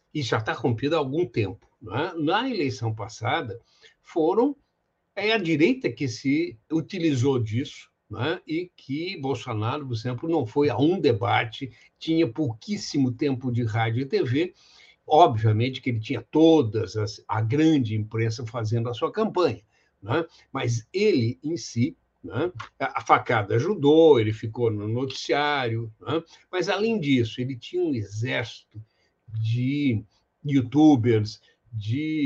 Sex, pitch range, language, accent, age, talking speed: male, 110-150 Hz, Portuguese, Brazilian, 60-79, 140 wpm